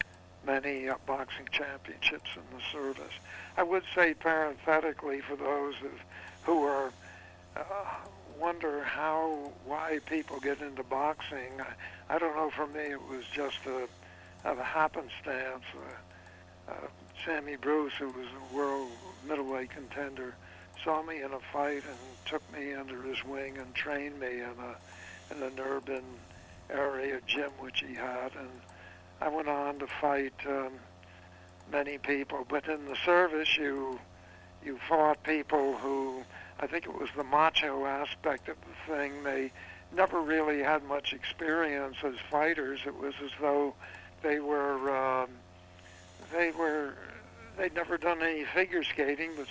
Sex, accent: male, American